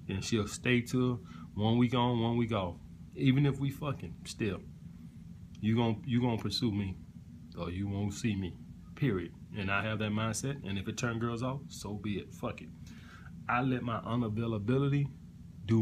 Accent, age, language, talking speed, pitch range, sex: American, 20-39, English, 180 wpm, 100-120 Hz, male